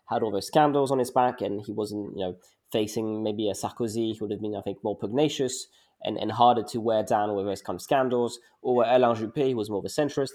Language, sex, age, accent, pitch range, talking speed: English, male, 20-39, British, 115-155 Hz, 260 wpm